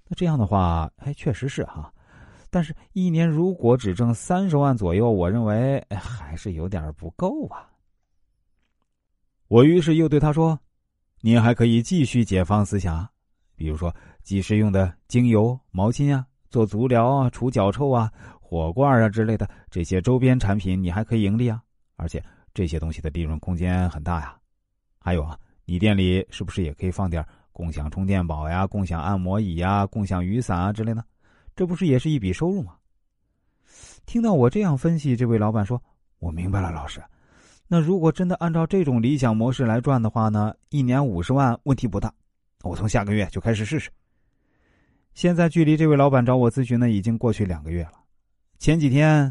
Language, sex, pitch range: Chinese, male, 90-135 Hz